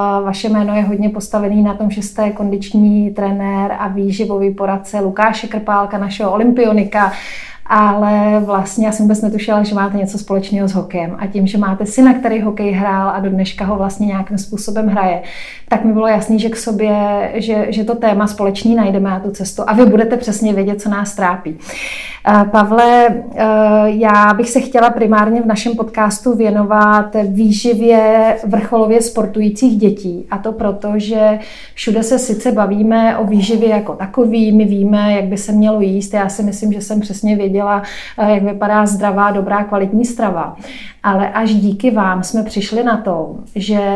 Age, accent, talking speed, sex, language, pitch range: 30-49, native, 175 wpm, female, Czech, 200-220 Hz